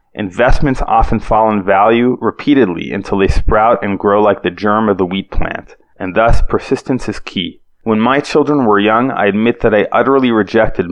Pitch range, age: 100-115 Hz, 30-49